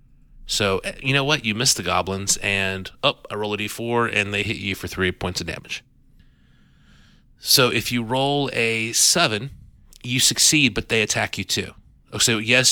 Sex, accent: male, American